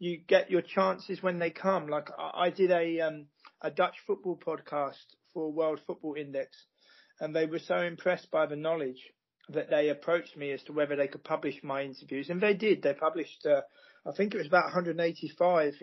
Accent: British